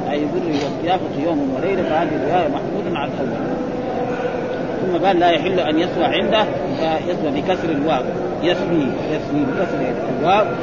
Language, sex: Arabic, male